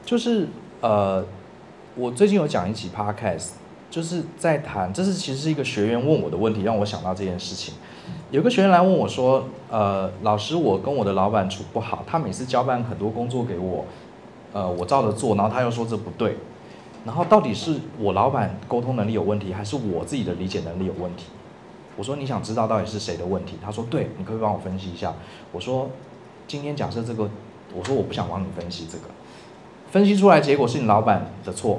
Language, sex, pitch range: Chinese, male, 105-165 Hz